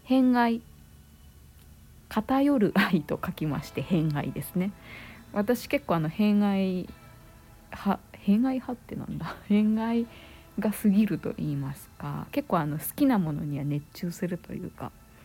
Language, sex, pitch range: Japanese, female, 155-215 Hz